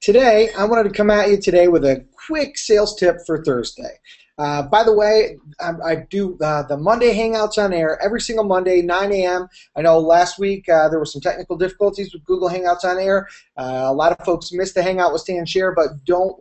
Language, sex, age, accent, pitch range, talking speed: English, male, 30-49, American, 160-215 Hz, 225 wpm